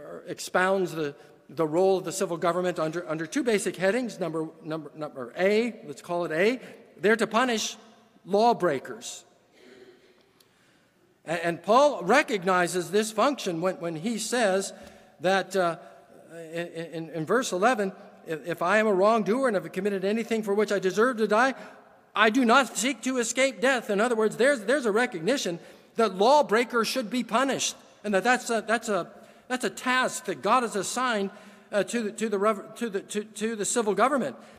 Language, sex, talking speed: English, male, 175 wpm